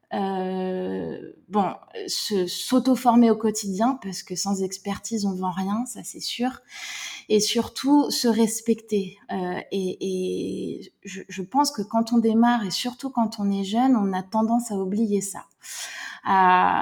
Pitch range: 190-225 Hz